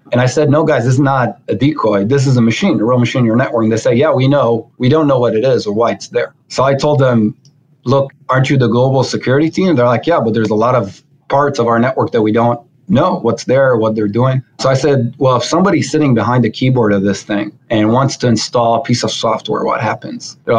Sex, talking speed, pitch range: male, 270 wpm, 110-135 Hz